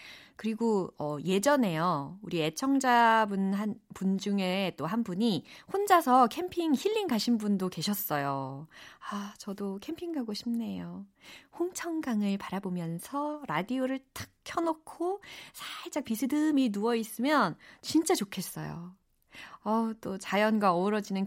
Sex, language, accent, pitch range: female, Korean, native, 170-265 Hz